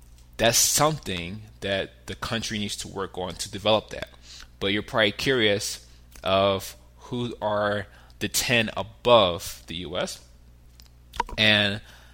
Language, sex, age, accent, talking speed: English, male, 20-39, American, 125 wpm